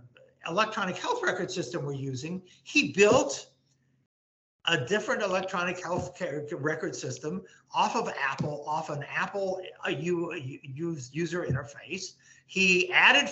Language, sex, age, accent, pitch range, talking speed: English, male, 50-69, American, 140-195 Hz, 120 wpm